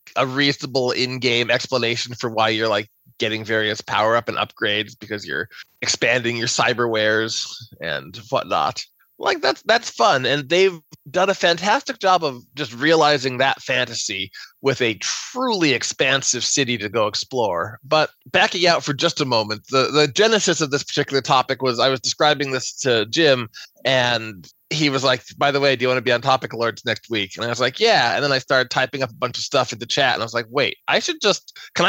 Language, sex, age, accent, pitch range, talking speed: English, male, 20-39, American, 120-155 Hz, 205 wpm